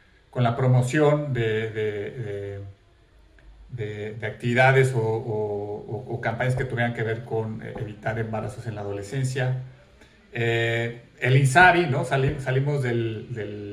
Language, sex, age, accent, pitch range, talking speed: Spanish, male, 40-59, Mexican, 115-135 Hz, 120 wpm